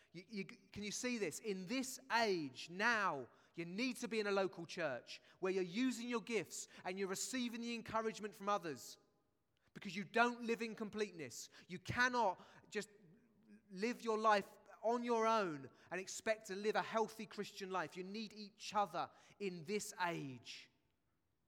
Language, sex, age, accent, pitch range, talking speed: English, male, 30-49, British, 135-205 Hz, 160 wpm